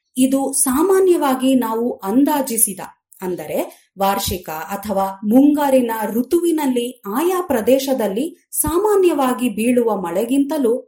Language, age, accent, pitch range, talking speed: Kannada, 30-49, native, 220-300 Hz, 75 wpm